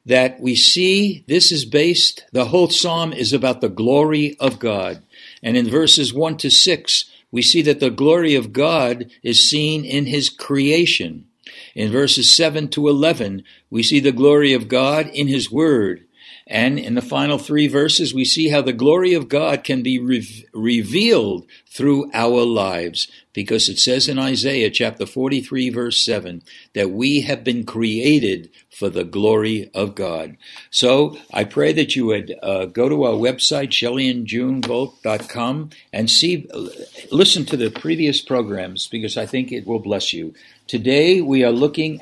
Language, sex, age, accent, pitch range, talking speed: English, male, 60-79, American, 115-150 Hz, 165 wpm